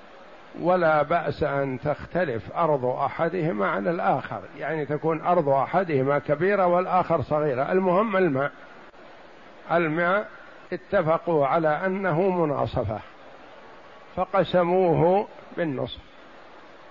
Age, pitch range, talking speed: 60-79, 165-210 Hz, 85 wpm